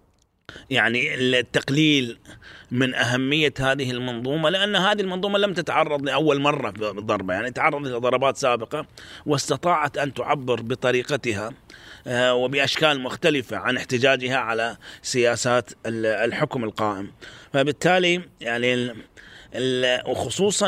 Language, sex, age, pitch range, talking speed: Arabic, male, 30-49, 120-150 Hz, 95 wpm